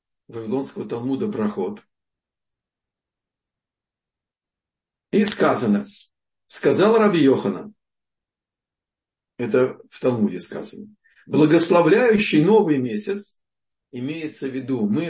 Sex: male